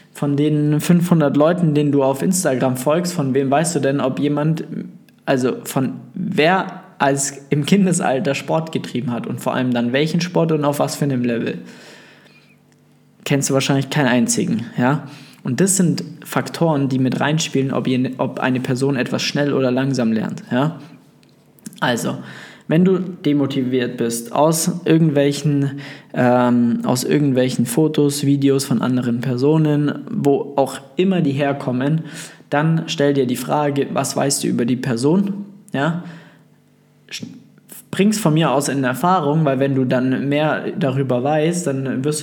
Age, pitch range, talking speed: 20-39, 130-160 Hz, 150 wpm